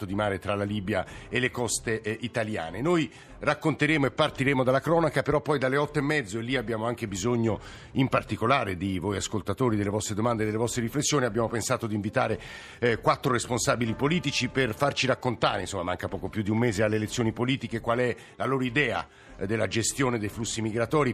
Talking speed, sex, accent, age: 200 wpm, male, native, 50-69